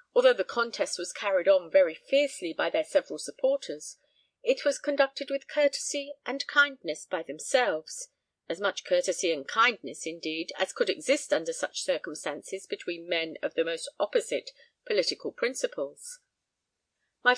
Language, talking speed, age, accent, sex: English, 145 wpm, 40-59, British, female